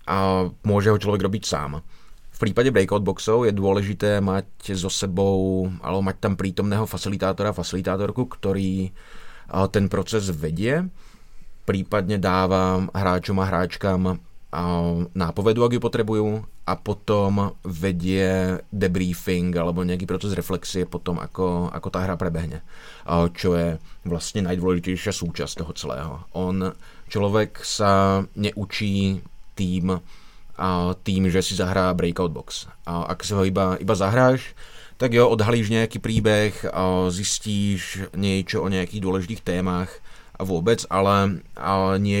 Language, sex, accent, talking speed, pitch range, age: English, male, Czech, 130 wpm, 90-105 Hz, 20-39